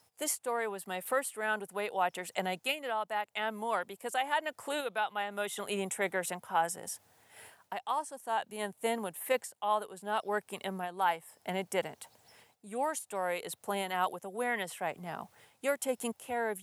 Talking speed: 215 wpm